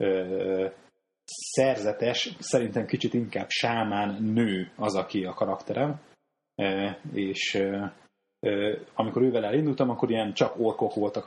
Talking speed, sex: 100 wpm, male